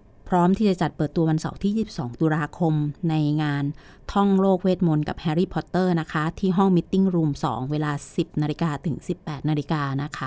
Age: 20-39